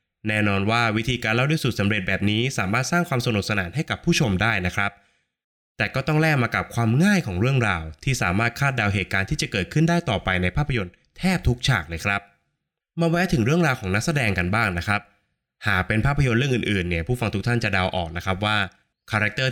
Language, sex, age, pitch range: Thai, male, 20-39, 95-130 Hz